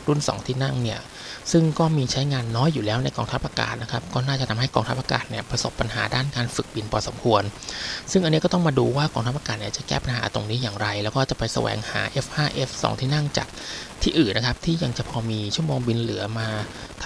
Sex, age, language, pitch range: male, 20-39, Thai, 110-140 Hz